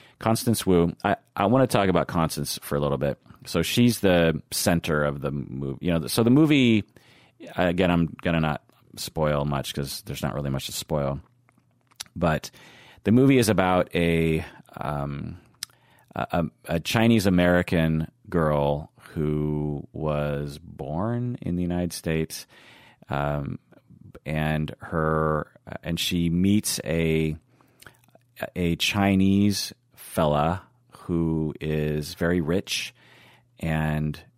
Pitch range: 75-95 Hz